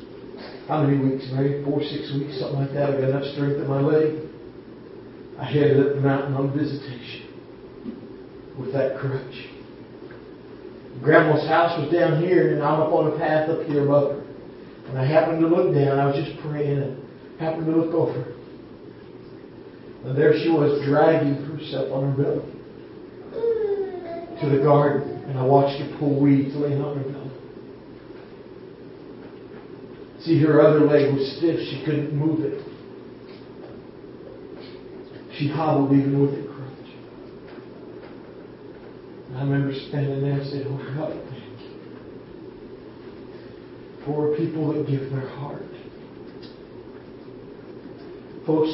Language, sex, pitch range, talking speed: English, male, 140-155 Hz, 140 wpm